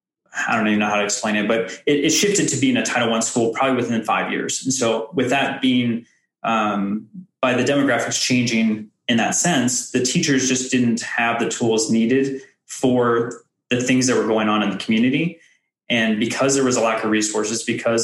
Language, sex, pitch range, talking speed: English, male, 110-130 Hz, 205 wpm